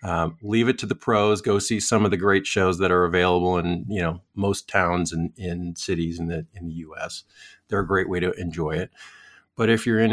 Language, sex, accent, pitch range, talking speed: English, male, American, 95-110 Hz, 245 wpm